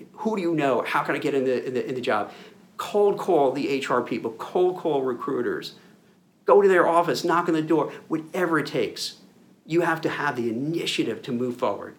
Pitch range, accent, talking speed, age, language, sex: 130-180 Hz, American, 215 wpm, 50-69, English, male